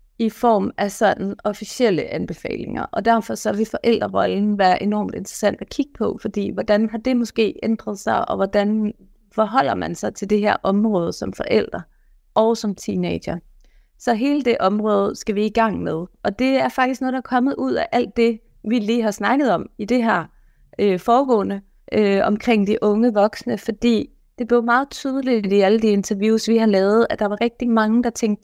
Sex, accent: female, native